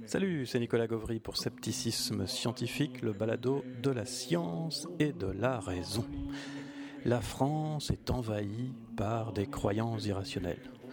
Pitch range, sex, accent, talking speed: 110-135 Hz, male, French, 130 wpm